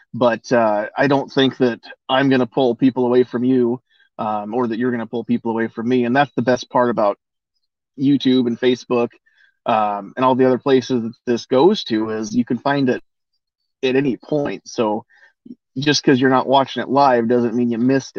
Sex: male